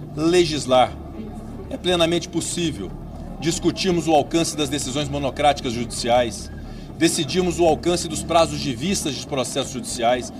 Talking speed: 120 wpm